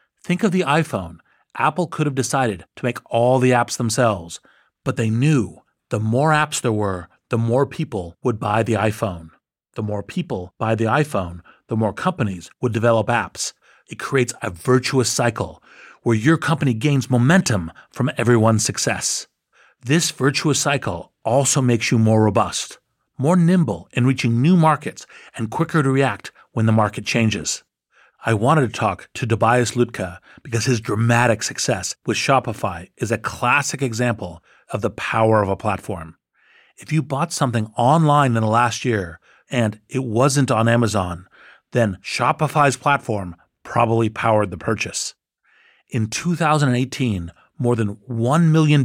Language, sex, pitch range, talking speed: English, male, 110-135 Hz, 155 wpm